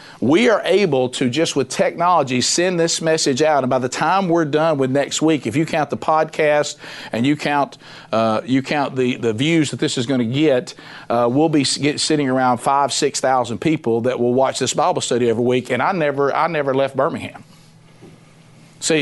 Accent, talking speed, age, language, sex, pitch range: American, 210 wpm, 50-69, English, male, 130-160 Hz